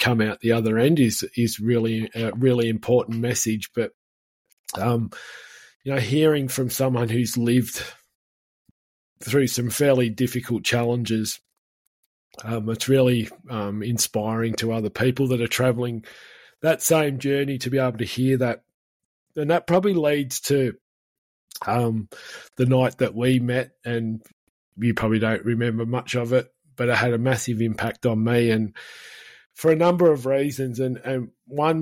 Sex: male